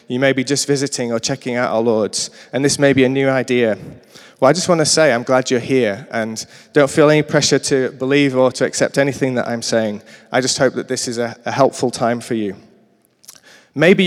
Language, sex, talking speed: English, male, 230 wpm